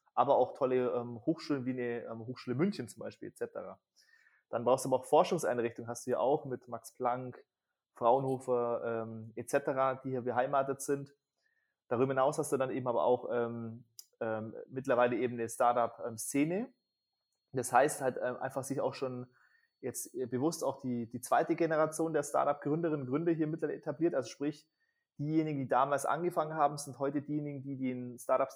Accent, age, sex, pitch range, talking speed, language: German, 30-49, male, 120-150 Hz, 170 wpm, English